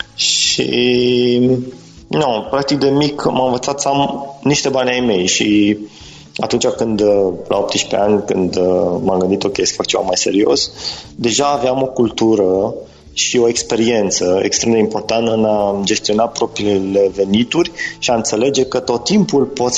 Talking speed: 150 wpm